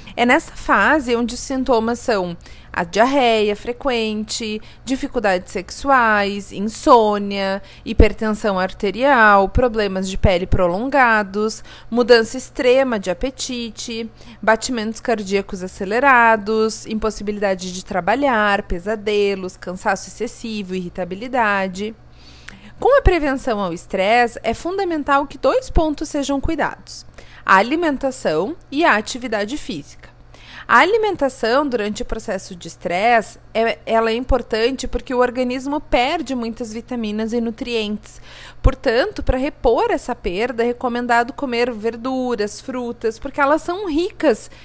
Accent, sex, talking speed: Brazilian, female, 115 wpm